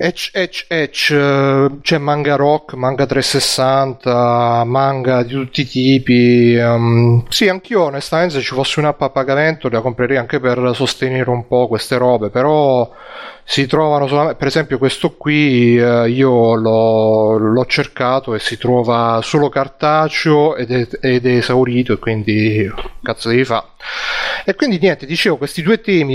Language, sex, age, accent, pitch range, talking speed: Italian, male, 30-49, native, 120-150 Hz, 145 wpm